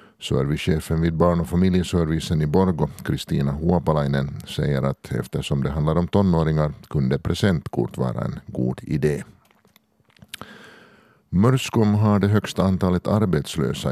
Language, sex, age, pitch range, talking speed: Swedish, male, 50-69, 70-90 Hz, 120 wpm